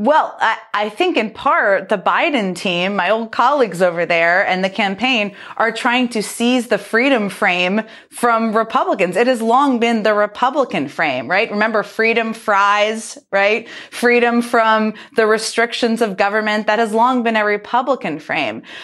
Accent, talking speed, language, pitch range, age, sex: American, 160 wpm, English, 205-240 Hz, 30-49, female